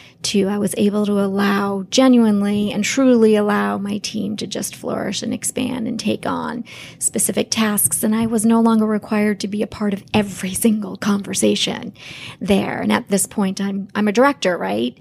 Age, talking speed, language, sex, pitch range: 30-49, 185 wpm, English, female, 195-215 Hz